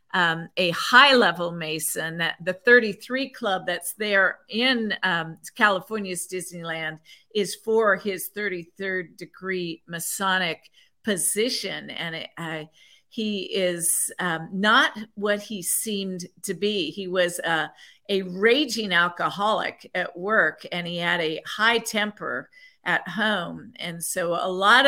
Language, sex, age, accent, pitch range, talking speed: English, female, 50-69, American, 180-220 Hz, 125 wpm